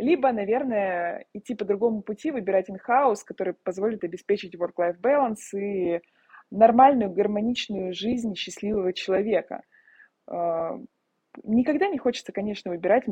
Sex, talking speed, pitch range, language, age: female, 110 wpm, 185-220 Hz, Russian, 20-39